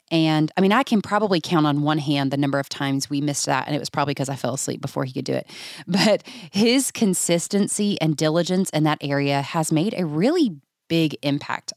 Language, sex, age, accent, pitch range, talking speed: English, female, 30-49, American, 145-190 Hz, 225 wpm